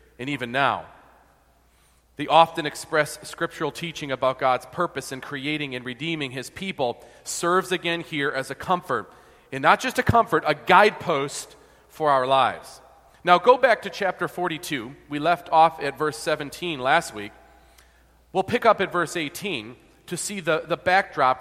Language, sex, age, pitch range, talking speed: English, male, 40-59, 145-180 Hz, 165 wpm